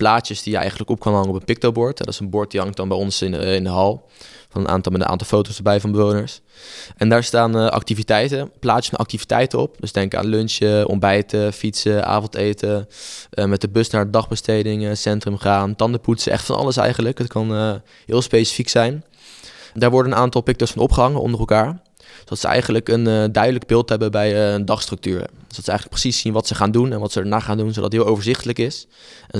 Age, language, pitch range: 20-39, Dutch, 100-115 Hz